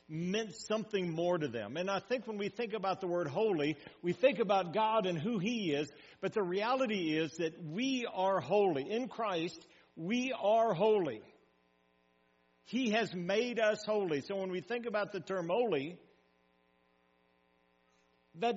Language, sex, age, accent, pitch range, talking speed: English, male, 60-79, American, 155-210 Hz, 160 wpm